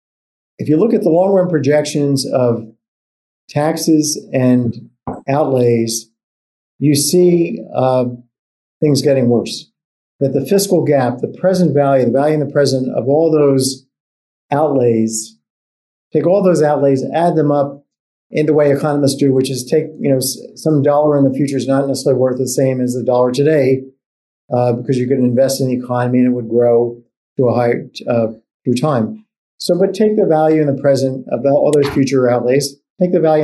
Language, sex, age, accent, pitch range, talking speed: English, male, 50-69, American, 125-150 Hz, 180 wpm